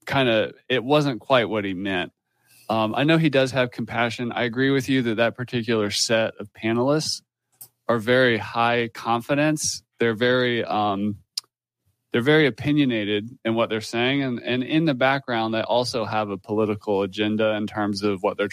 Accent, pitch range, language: American, 110-135 Hz, English